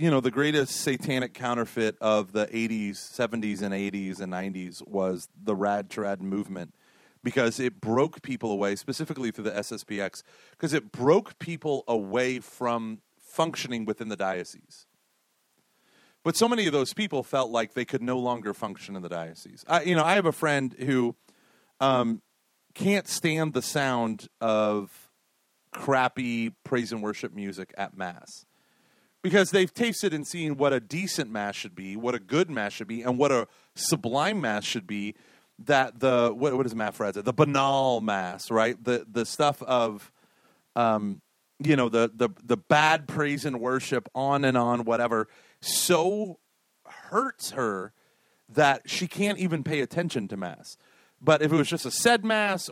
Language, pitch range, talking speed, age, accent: English, 110-155 Hz, 165 wpm, 40-59, American